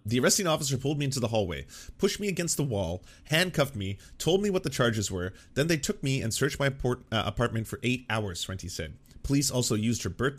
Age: 30-49